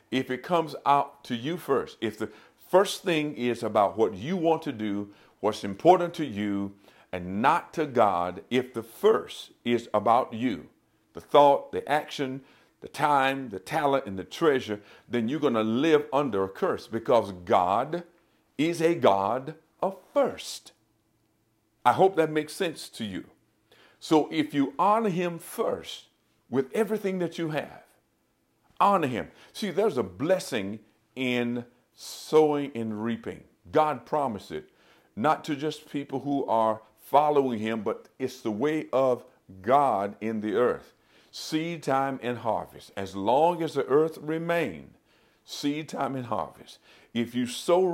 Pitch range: 110-160 Hz